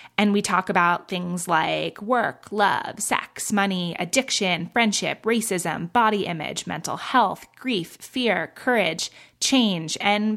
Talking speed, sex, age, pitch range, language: 125 wpm, female, 20-39, 185-235 Hz, English